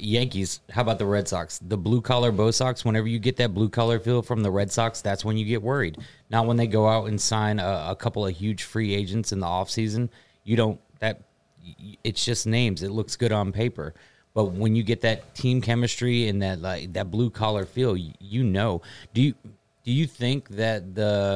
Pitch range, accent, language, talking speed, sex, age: 95-115 Hz, American, English, 220 wpm, male, 30-49